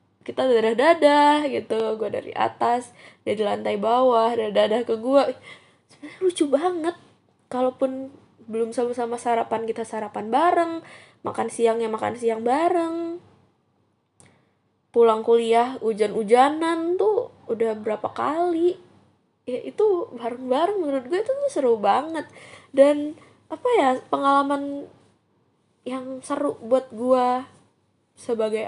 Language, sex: Indonesian, female